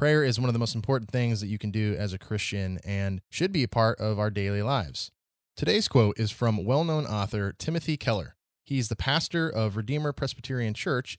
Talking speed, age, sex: 210 wpm, 30-49, male